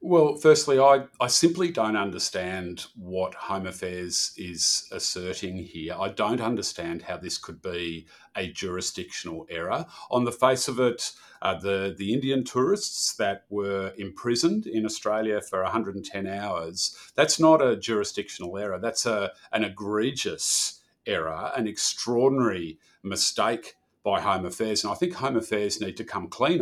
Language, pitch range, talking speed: Malayalam, 100-125 Hz, 150 wpm